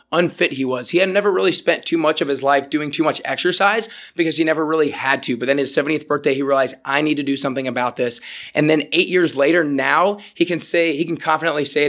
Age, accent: 20-39, American